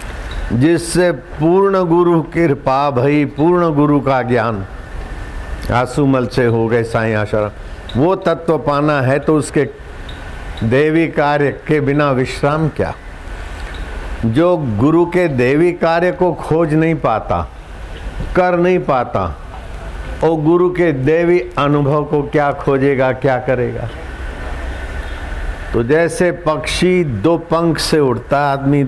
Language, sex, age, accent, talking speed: Hindi, male, 60-79, native, 120 wpm